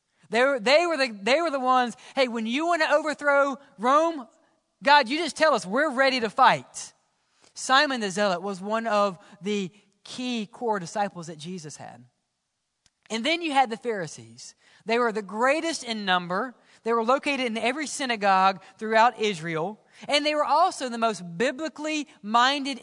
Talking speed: 165 wpm